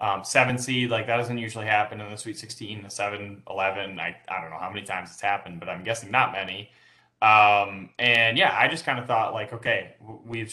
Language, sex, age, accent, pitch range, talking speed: English, male, 20-39, American, 100-120 Hz, 235 wpm